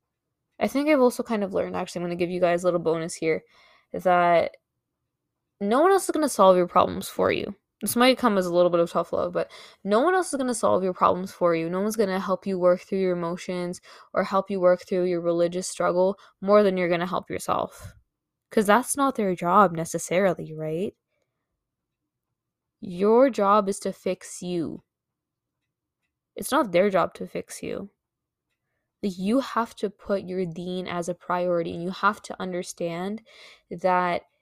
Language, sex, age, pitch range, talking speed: English, female, 10-29, 180-210 Hz, 195 wpm